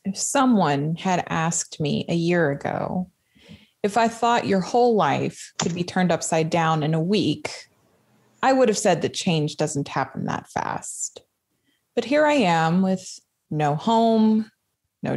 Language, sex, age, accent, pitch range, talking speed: English, female, 20-39, American, 155-205 Hz, 160 wpm